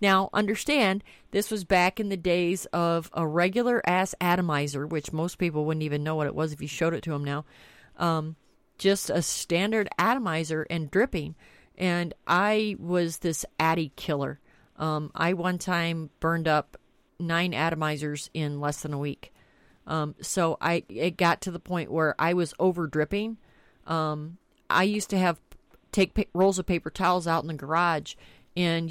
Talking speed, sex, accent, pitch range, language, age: 170 wpm, female, American, 160-190 Hz, English, 30-49